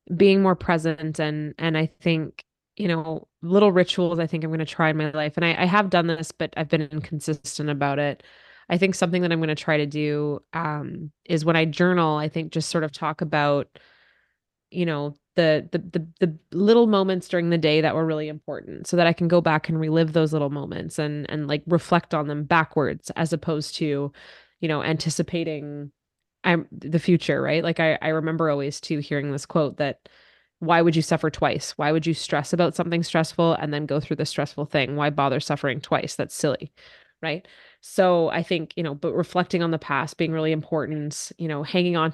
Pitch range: 150-170 Hz